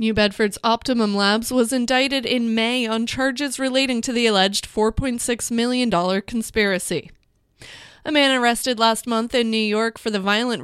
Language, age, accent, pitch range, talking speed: English, 20-39, American, 195-235 Hz, 160 wpm